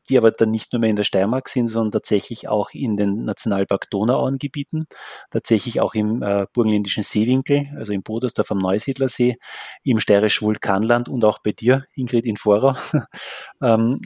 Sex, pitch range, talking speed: male, 105-120 Hz, 165 wpm